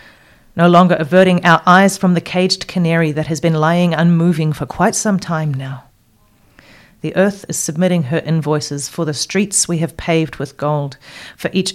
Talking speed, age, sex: 180 wpm, 40-59, female